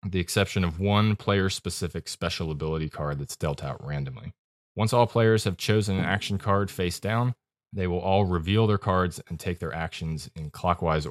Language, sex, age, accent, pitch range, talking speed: English, male, 20-39, American, 80-100 Hz, 185 wpm